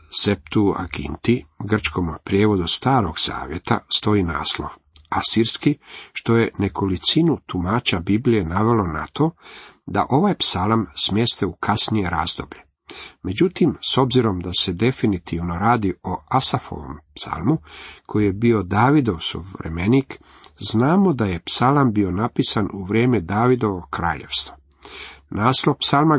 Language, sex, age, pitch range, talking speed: Croatian, male, 50-69, 95-120 Hz, 115 wpm